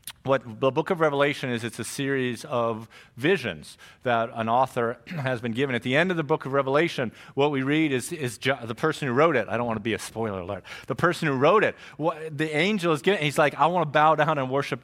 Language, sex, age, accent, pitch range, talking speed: English, male, 40-59, American, 115-150 Hz, 255 wpm